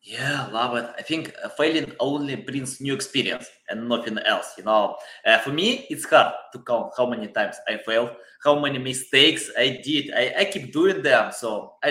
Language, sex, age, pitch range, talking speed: English, male, 20-39, 125-170 Hz, 200 wpm